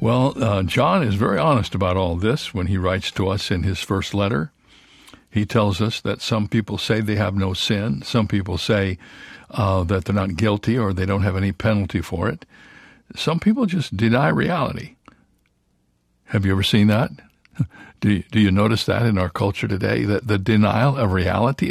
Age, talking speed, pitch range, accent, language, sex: 60-79, 195 wpm, 100-150 Hz, American, English, male